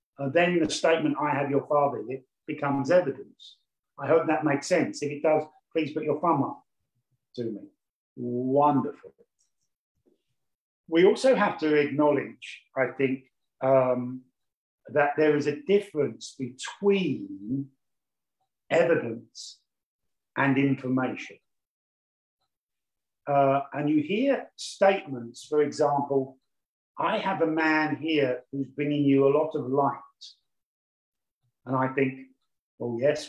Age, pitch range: 50-69, 135-165 Hz